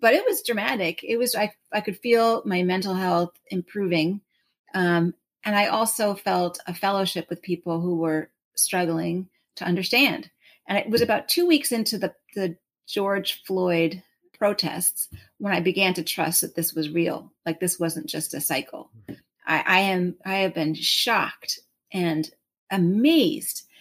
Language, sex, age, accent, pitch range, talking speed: English, female, 30-49, American, 175-215 Hz, 160 wpm